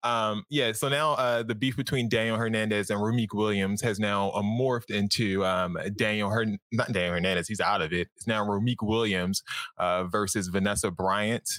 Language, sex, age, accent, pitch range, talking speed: English, male, 20-39, American, 95-115 Hz, 185 wpm